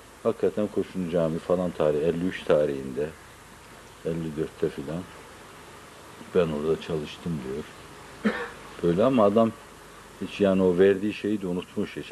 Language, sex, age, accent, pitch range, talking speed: Turkish, male, 60-79, native, 80-105 Hz, 120 wpm